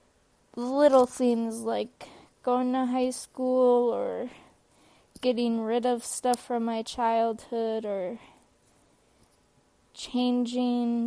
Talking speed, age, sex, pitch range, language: 90 wpm, 20-39, female, 230-245 Hz, English